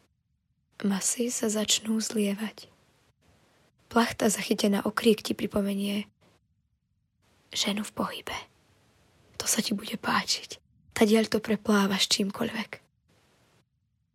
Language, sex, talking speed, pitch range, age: Slovak, female, 90 wpm, 205-230 Hz, 20-39